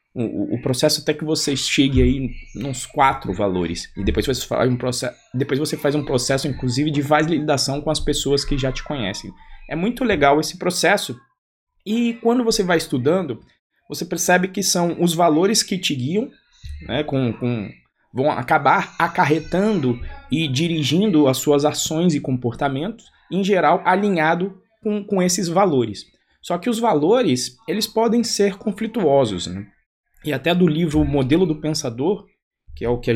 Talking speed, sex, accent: 165 wpm, male, Brazilian